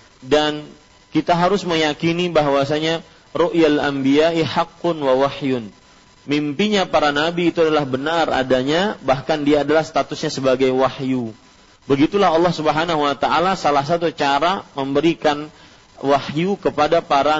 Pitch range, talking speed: 130-170 Hz, 120 wpm